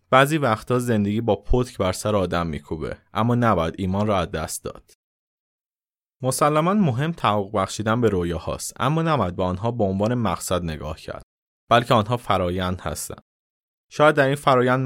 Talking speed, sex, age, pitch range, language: 155 wpm, male, 20-39, 95-120 Hz, Persian